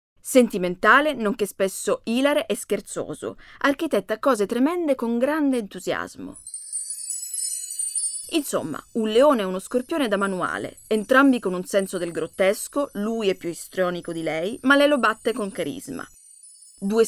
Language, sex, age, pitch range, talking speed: Italian, female, 30-49, 190-265 Hz, 135 wpm